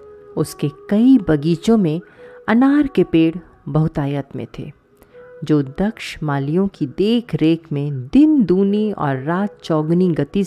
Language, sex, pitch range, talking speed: Hindi, female, 150-220 Hz, 125 wpm